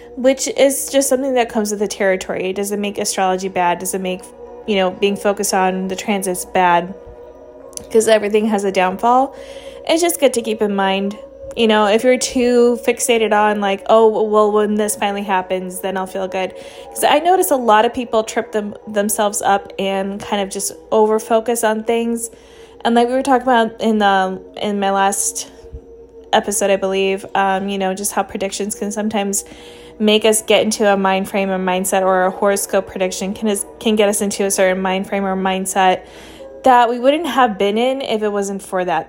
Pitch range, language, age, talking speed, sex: 195-235 Hz, English, 20-39, 200 wpm, female